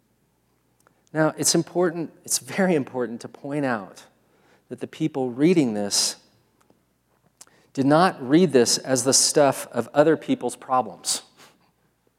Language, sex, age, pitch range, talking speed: English, male, 40-59, 140-195 Hz, 125 wpm